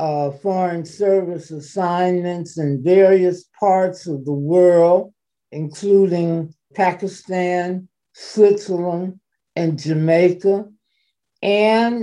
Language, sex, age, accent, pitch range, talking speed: English, male, 60-79, American, 165-205 Hz, 80 wpm